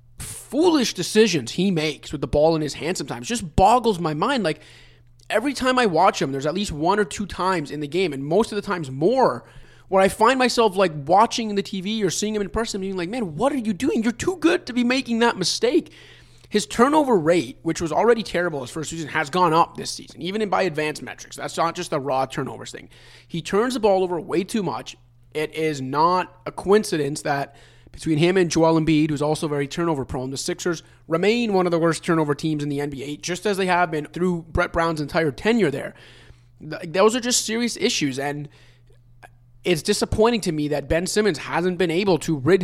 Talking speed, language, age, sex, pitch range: 220 wpm, English, 20-39, male, 145-205 Hz